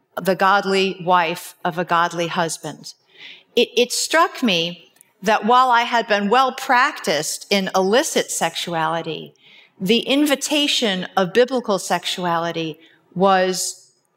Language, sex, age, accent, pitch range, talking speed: English, female, 40-59, American, 185-235 Hz, 110 wpm